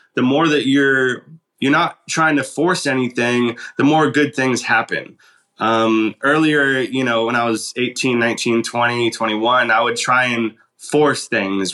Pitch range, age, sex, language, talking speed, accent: 115-145 Hz, 20-39, male, English, 165 wpm, American